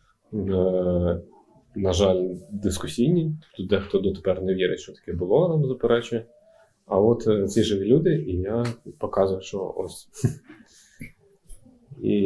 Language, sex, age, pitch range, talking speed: Ukrainian, male, 20-39, 95-130 Hz, 120 wpm